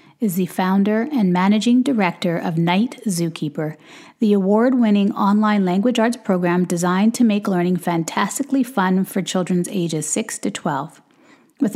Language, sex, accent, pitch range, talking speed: English, female, American, 185-235 Hz, 145 wpm